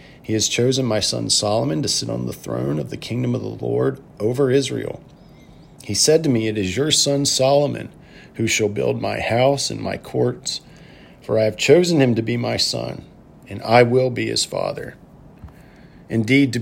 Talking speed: 190 wpm